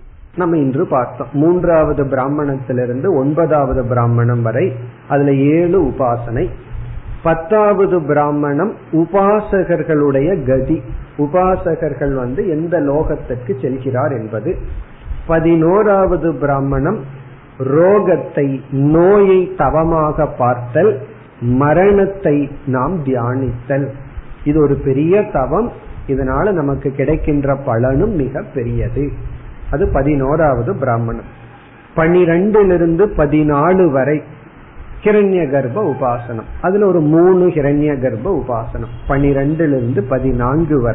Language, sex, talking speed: Tamil, male, 70 wpm